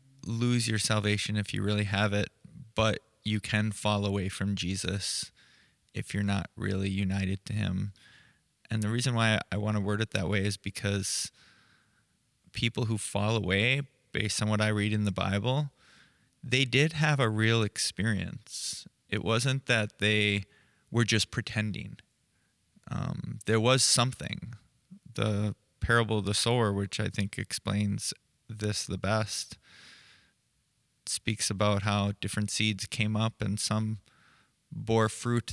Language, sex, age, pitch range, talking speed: English, male, 20-39, 100-115 Hz, 145 wpm